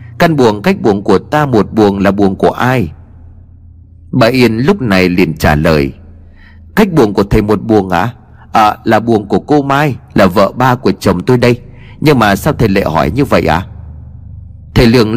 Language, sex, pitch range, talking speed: Vietnamese, male, 105-140 Hz, 200 wpm